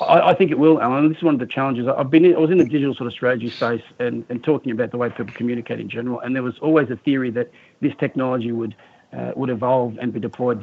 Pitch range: 120-145 Hz